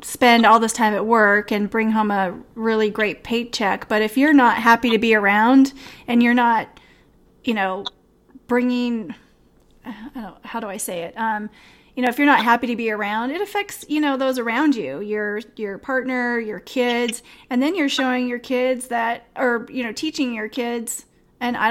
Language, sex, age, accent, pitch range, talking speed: English, female, 30-49, American, 225-255 Hz, 200 wpm